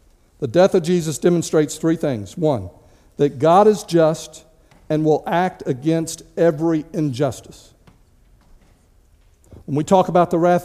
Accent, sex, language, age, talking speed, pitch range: American, male, English, 50-69, 135 wpm, 145-185 Hz